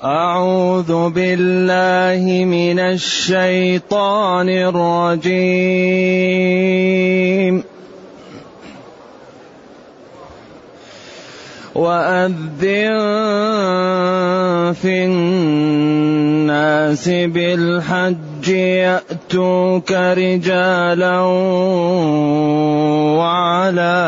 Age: 30-49